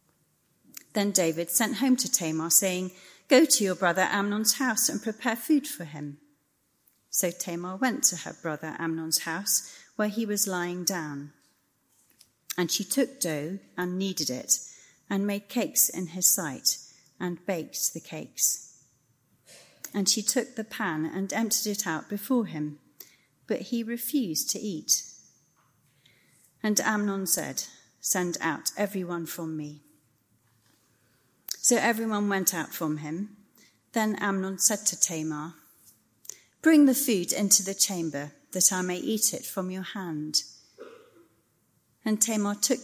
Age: 40-59